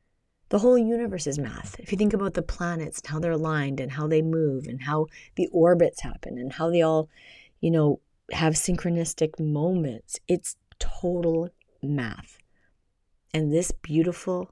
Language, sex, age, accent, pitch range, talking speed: English, female, 30-49, American, 150-175 Hz, 160 wpm